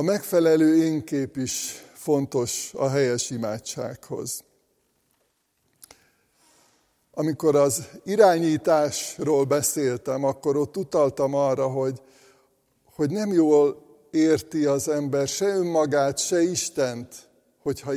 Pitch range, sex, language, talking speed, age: 140-170 Hz, male, Hungarian, 95 wpm, 60-79